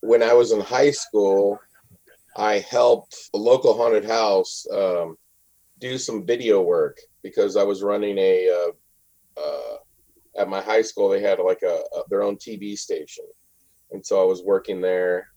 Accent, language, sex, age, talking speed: American, English, male, 40-59, 170 wpm